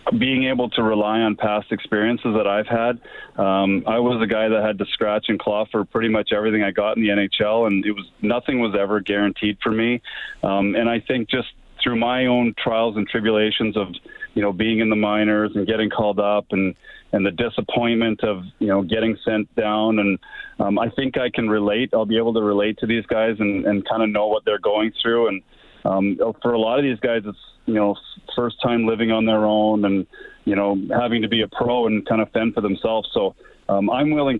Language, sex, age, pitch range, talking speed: English, male, 30-49, 105-115 Hz, 225 wpm